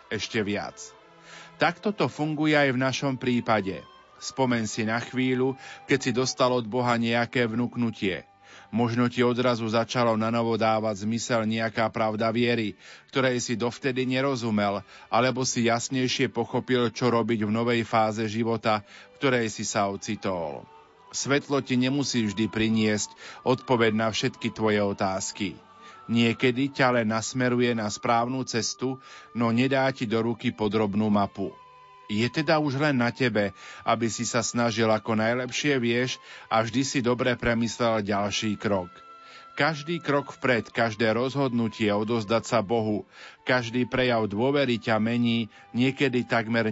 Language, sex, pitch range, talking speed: Slovak, male, 110-130 Hz, 135 wpm